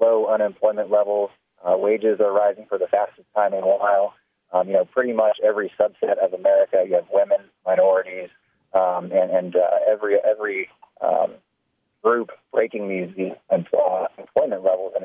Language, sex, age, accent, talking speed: English, male, 30-49, American, 160 wpm